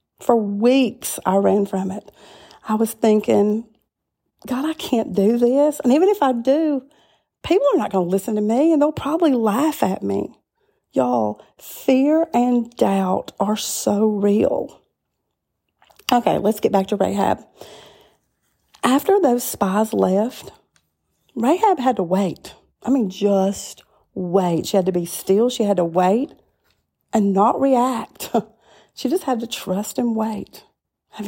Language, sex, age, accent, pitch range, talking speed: English, female, 40-59, American, 200-255 Hz, 150 wpm